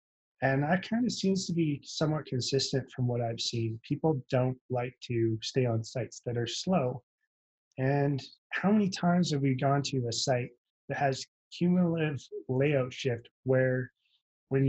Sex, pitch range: male, 125-150 Hz